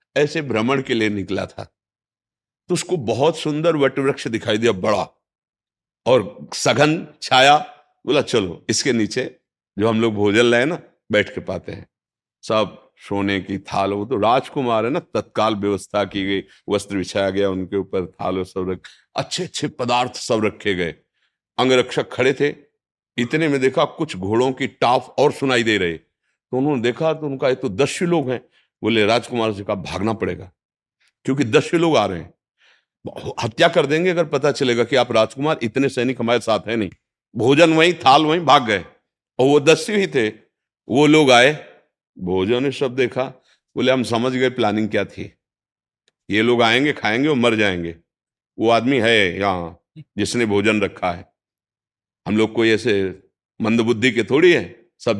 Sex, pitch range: male, 100-140 Hz